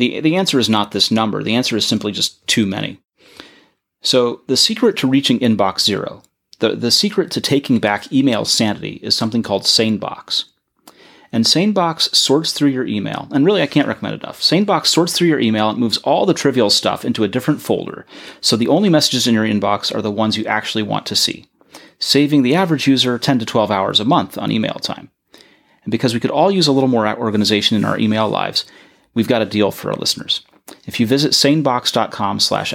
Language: English